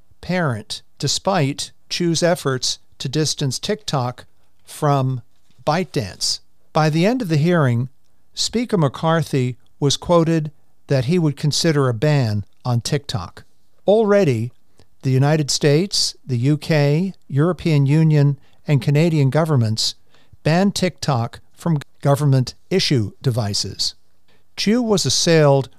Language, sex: English, male